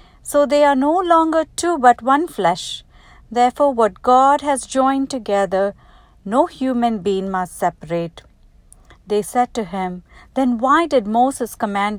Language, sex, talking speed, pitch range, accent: English, female, 145 wpm, 190-245 Hz, Indian